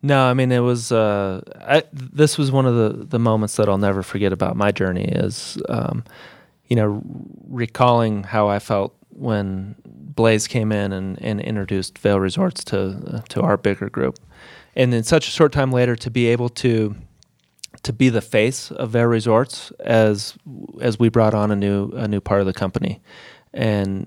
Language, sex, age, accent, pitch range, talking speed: English, male, 30-49, American, 100-115 Hz, 190 wpm